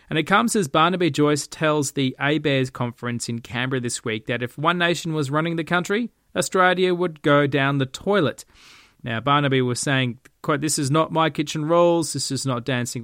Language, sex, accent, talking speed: English, male, Australian, 200 wpm